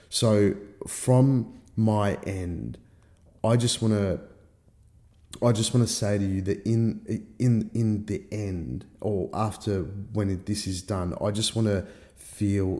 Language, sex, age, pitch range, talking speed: English, male, 30-49, 95-110 Hz, 130 wpm